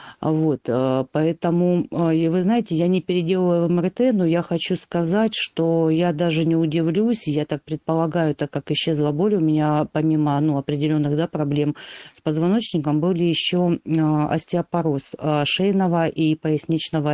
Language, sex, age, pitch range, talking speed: Russian, female, 40-59, 145-170 Hz, 135 wpm